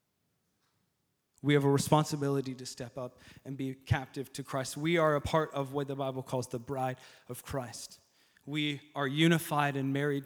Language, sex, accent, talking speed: English, male, American, 175 wpm